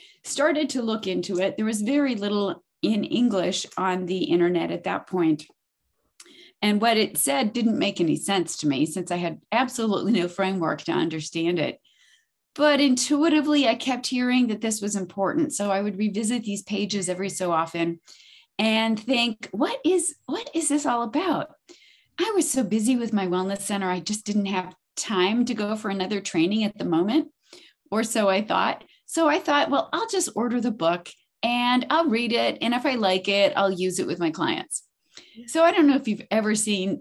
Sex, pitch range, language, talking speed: female, 185-250 Hz, English, 195 wpm